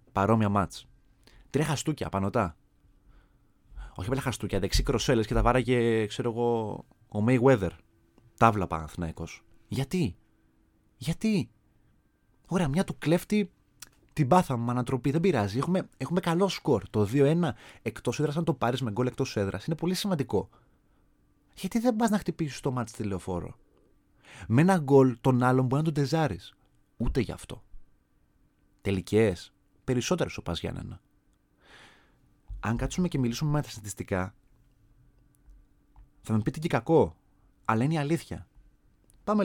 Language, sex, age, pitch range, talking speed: Greek, male, 30-49, 100-145 Hz, 135 wpm